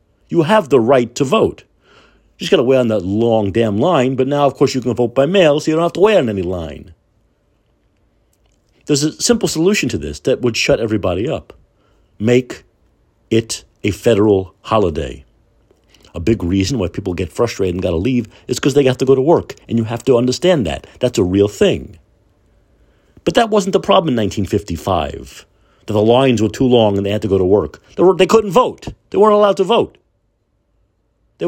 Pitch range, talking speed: 100-155 Hz, 210 wpm